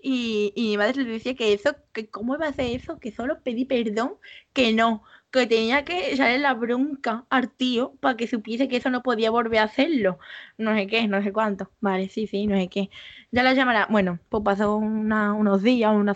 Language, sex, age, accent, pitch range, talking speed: Spanish, female, 20-39, Spanish, 200-255 Hz, 225 wpm